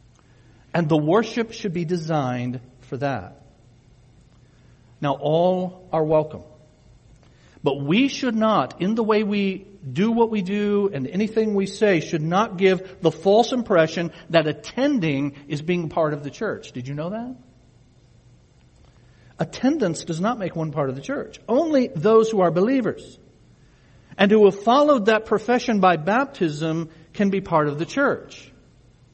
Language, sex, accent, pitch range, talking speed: English, male, American, 140-200 Hz, 150 wpm